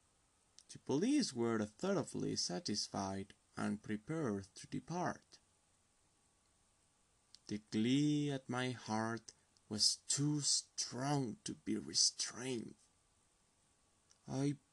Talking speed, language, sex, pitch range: 80 wpm, English, male, 95-145 Hz